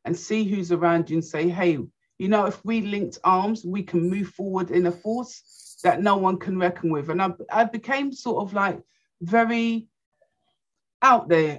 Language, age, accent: English, 50-69, British